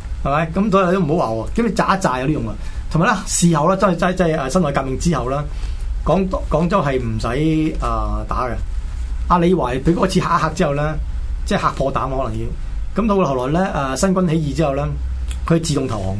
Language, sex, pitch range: Chinese, male, 125-175 Hz